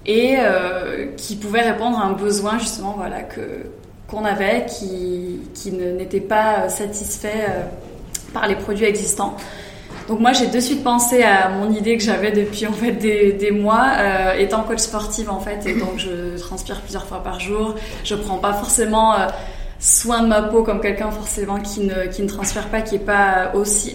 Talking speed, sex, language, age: 190 wpm, female, French, 20-39